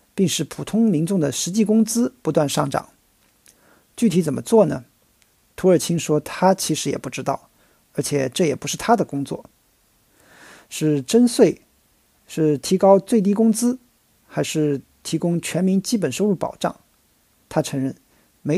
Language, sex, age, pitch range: Chinese, male, 50-69, 150-205 Hz